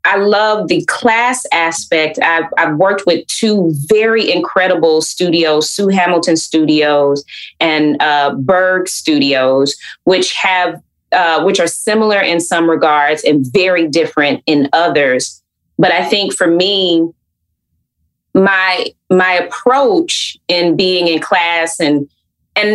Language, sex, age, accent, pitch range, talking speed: English, female, 20-39, American, 155-190 Hz, 125 wpm